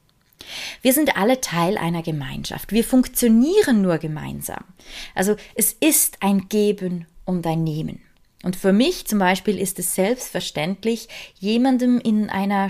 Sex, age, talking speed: female, 20-39, 135 wpm